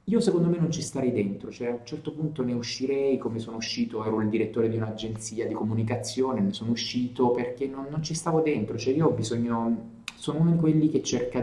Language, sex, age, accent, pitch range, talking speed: Italian, male, 30-49, native, 115-150 Hz, 225 wpm